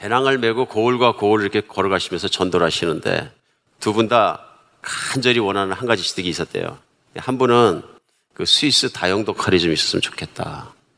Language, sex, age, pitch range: Korean, male, 50-69, 100-130 Hz